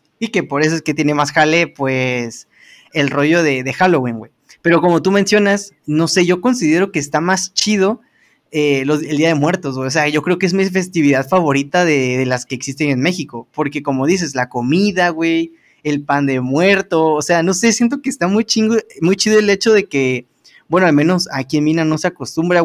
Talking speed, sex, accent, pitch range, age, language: 215 wpm, male, Mexican, 145-185 Hz, 20-39, Spanish